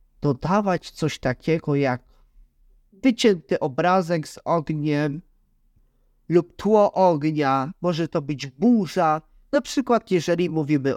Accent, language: native, Polish